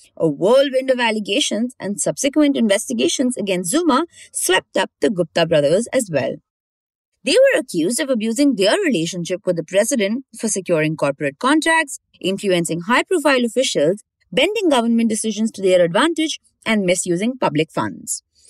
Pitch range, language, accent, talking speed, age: 180-285 Hz, English, Indian, 140 wpm, 30-49